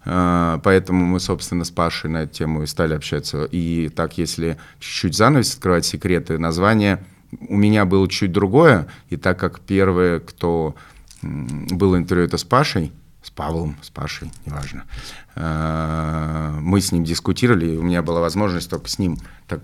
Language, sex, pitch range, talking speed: Russian, male, 85-100 Hz, 160 wpm